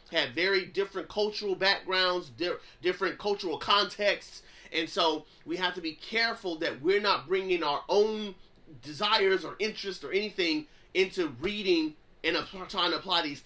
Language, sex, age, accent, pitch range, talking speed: English, male, 30-49, American, 165-235 Hz, 145 wpm